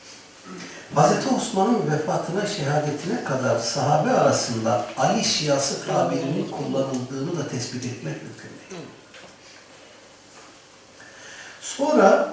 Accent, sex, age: native, male, 60-79